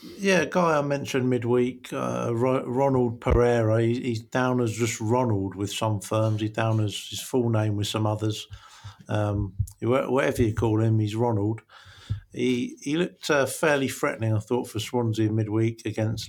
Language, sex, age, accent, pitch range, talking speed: English, male, 50-69, British, 105-125 Hz, 165 wpm